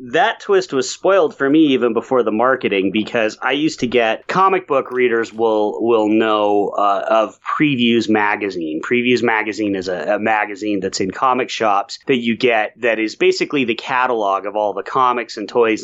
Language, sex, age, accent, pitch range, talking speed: English, male, 30-49, American, 105-130 Hz, 185 wpm